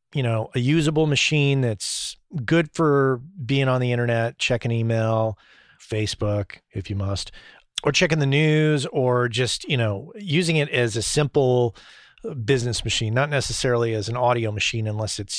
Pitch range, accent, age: 115-140 Hz, American, 40-59